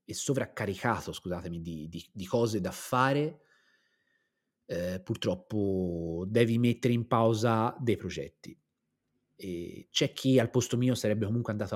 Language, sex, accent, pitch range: Italian, male, native, 105-130 Hz